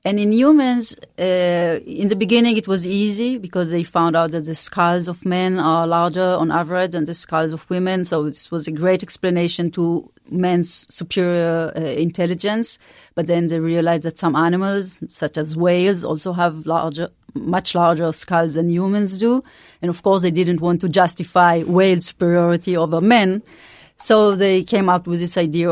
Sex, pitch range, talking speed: female, 170-200 Hz, 180 wpm